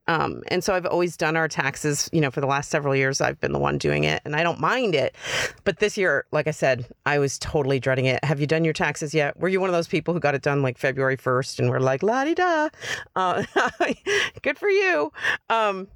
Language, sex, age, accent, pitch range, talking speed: English, female, 40-59, American, 150-220 Hz, 245 wpm